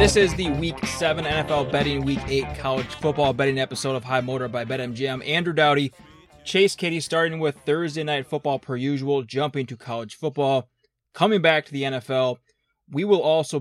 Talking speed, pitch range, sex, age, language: 180 wpm, 125-145 Hz, male, 20-39, English